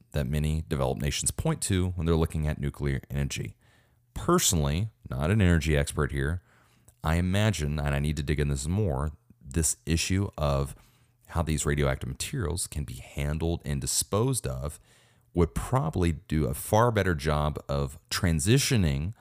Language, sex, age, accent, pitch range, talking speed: English, male, 30-49, American, 70-100 Hz, 155 wpm